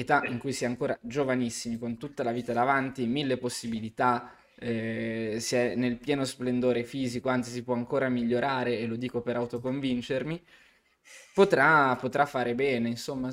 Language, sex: Italian, male